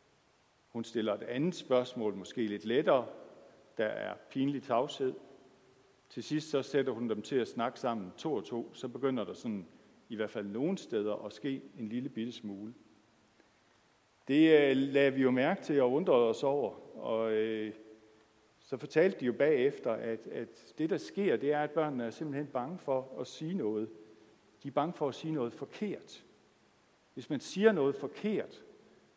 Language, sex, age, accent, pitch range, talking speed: Danish, male, 60-79, native, 120-150 Hz, 175 wpm